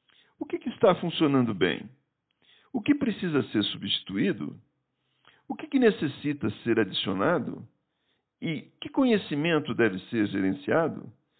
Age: 50-69